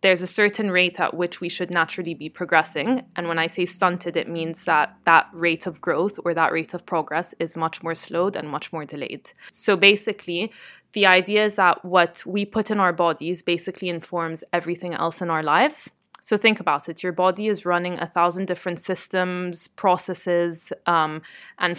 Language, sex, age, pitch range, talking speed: English, female, 20-39, 165-190 Hz, 195 wpm